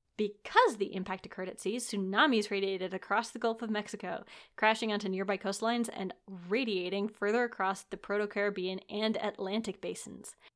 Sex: female